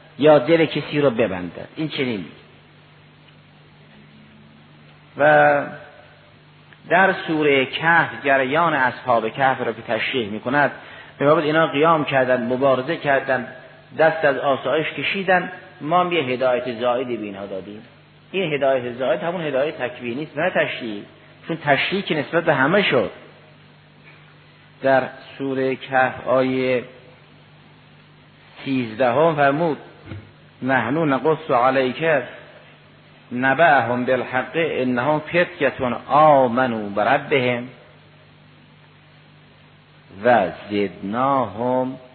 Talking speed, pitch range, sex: 100 wpm, 125-155 Hz, male